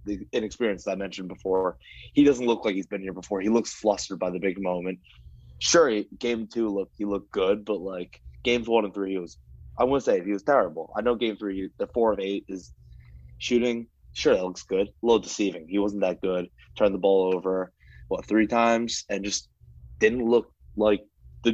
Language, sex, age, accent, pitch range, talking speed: English, male, 20-39, American, 90-110 Hz, 215 wpm